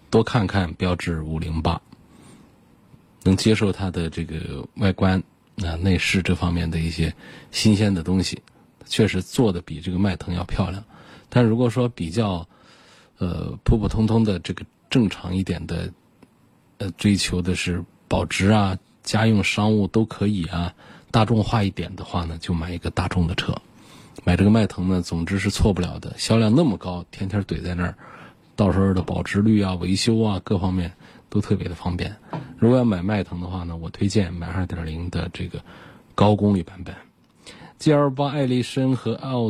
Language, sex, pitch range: Chinese, male, 90-110 Hz